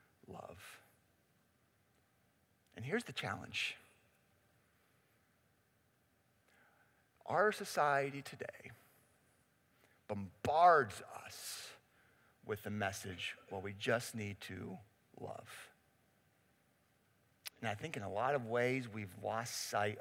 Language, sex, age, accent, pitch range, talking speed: English, male, 50-69, American, 100-125 Hz, 90 wpm